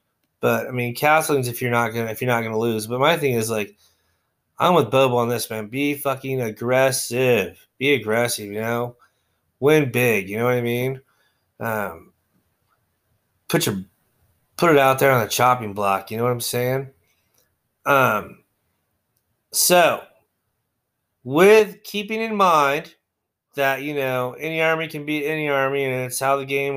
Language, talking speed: English, 165 wpm